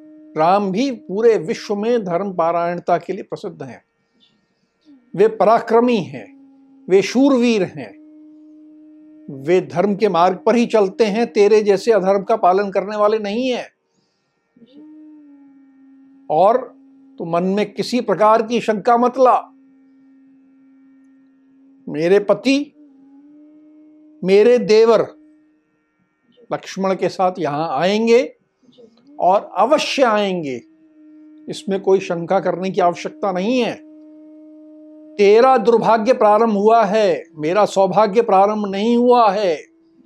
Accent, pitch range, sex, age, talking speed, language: native, 195-270 Hz, male, 60-79, 115 wpm, Hindi